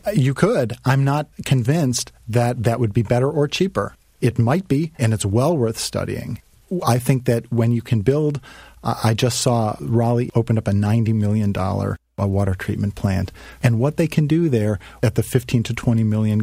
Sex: male